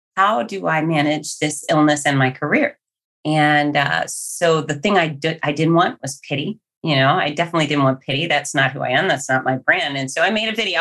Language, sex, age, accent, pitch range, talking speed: English, female, 30-49, American, 140-175 Hz, 240 wpm